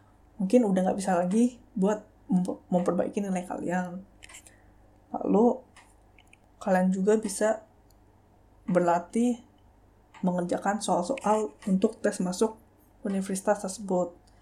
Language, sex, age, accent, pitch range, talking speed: Indonesian, female, 20-39, native, 180-215 Hz, 85 wpm